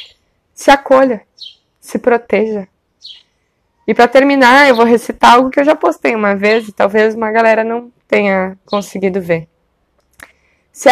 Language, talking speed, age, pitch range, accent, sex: Portuguese, 145 wpm, 20-39, 190-240 Hz, Brazilian, female